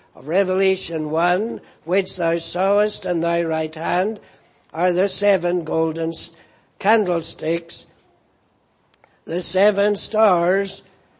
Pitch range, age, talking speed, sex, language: 185-220 Hz, 60-79, 95 wpm, male, English